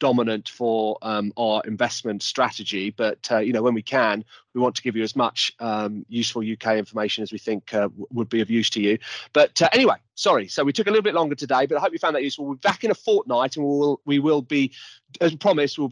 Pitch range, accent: 120-165 Hz, British